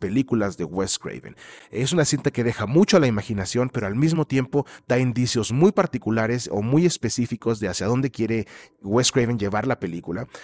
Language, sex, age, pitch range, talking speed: English, male, 30-49, 110-140 Hz, 190 wpm